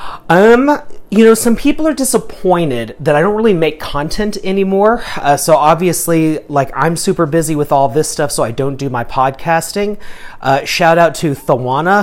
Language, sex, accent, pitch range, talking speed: English, male, American, 135-170 Hz, 195 wpm